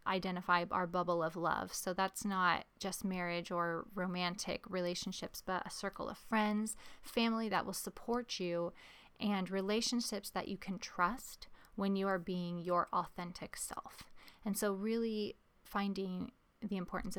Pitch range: 180-210 Hz